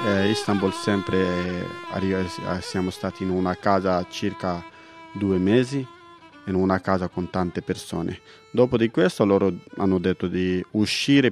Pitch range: 95-115 Hz